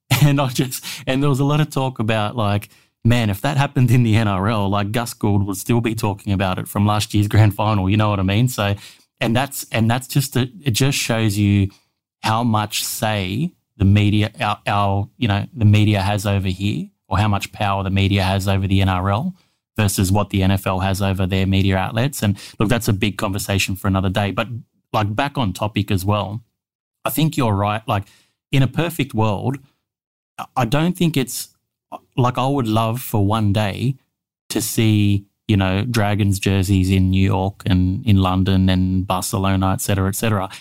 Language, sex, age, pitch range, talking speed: English, male, 20-39, 100-120 Hz, 200 wpm